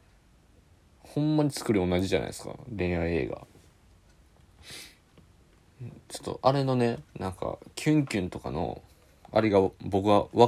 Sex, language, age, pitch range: male, Japanese, 20-39, 90-115 Hz